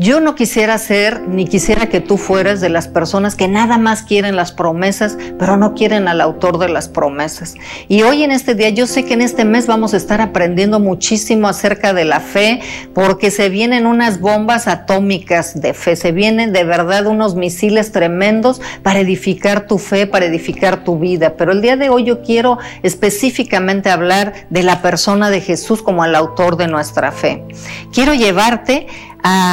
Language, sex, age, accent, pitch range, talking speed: Spanish, female, 50-69, Mexican, 185-225 Hz, 185 wpm